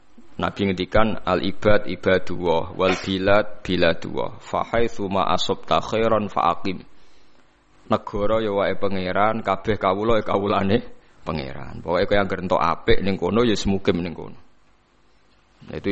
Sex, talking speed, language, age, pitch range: male, 135 wpm, Indonesian, 20-39, 90-105 Hz